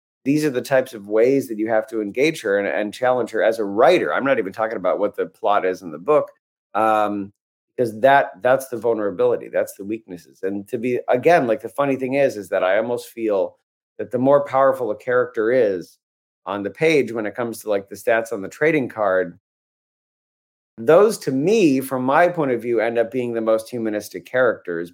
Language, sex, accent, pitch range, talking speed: English, male, American, 100-140 Hz, 215 wpm